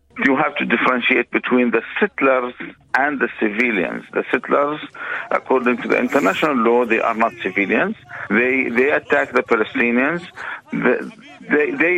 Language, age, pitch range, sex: Filipino, 50-69, 130-160 Hz, male